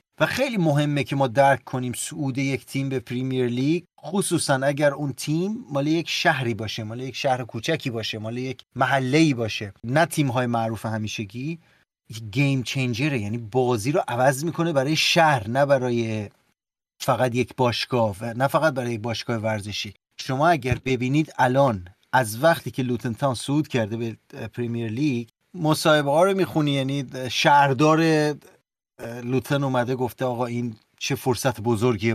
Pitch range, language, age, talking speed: 120-155 Hz, Persian, 30-49, 160 wpm